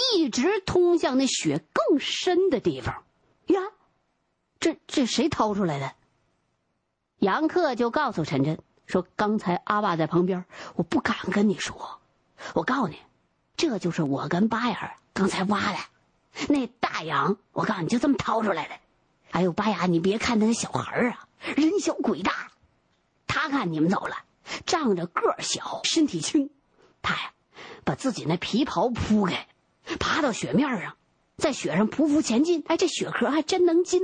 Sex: female